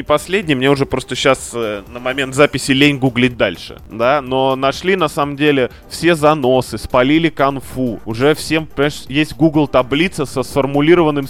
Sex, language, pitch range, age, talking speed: male, Russian, 120-145 Hz, 20-39, 155 wpm